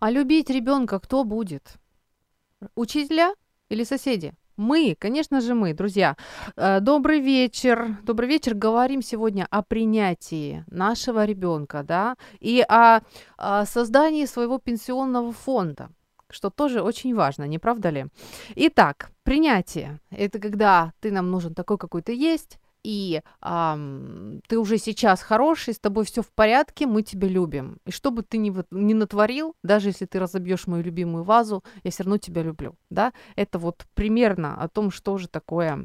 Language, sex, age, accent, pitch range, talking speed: Ukrainian, female, 30-49, native, 180-235 Hz, 150 wpm